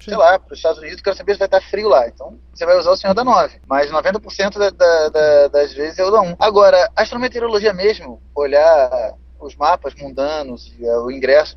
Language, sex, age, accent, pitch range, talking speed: English, male, 20-39, Brazilian, 175-225 Hz, 225 wpm